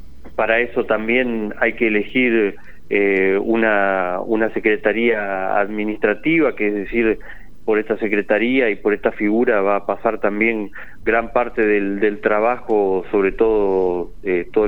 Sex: male